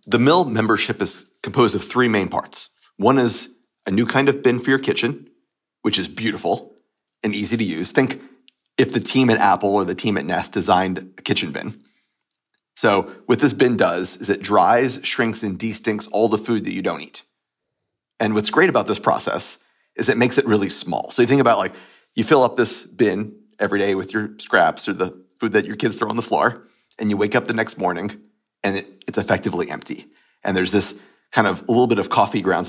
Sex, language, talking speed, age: male, English, 220 wpm, 30-49